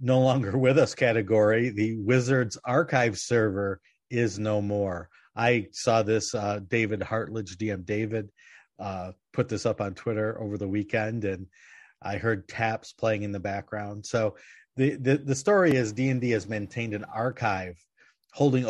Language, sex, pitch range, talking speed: English, male, 100-120 Hz, 155 wpm